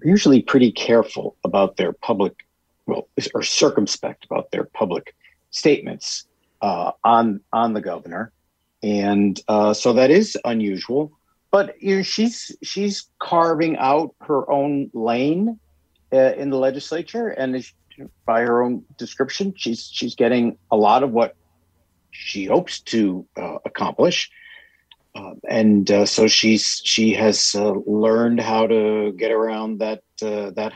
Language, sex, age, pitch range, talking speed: English, male, 50-69, 105-145 Hz, 140 wpm